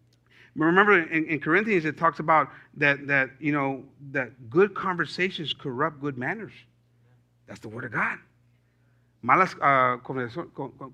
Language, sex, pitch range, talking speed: English, male, 120-155 Hz, 130 wpm